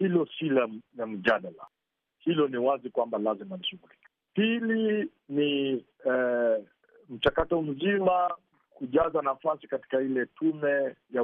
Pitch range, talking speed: 120-190 Hz, 125 wpm